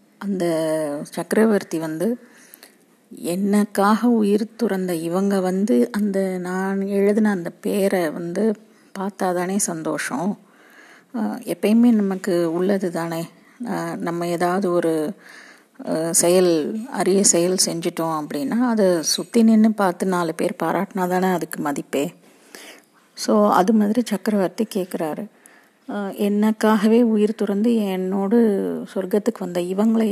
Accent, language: native, Tamil